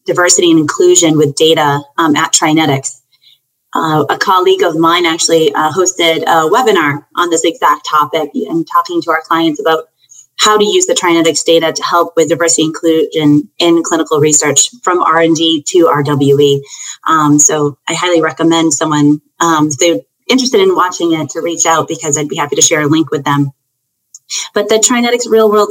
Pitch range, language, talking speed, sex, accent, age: 155-190 Hz, English, 180 wpm, female, American, 30-49